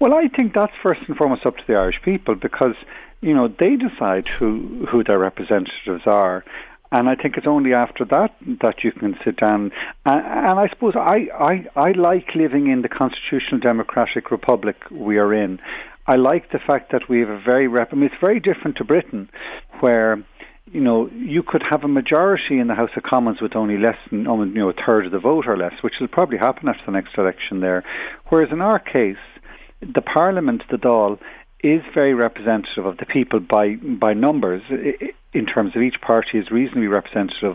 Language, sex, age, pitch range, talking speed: English, male, 50-69, 105-160 Hz, 205 wpm